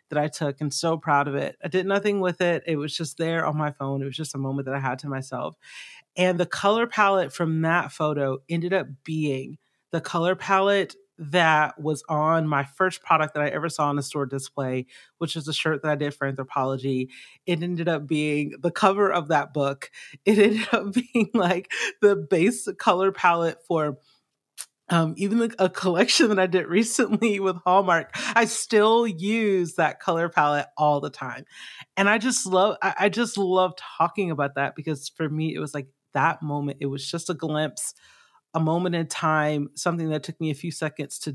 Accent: American